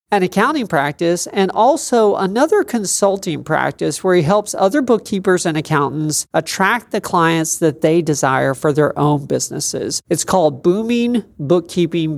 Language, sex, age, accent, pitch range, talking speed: English, male, 40-59, American, 155-210 Hz, 145 wpm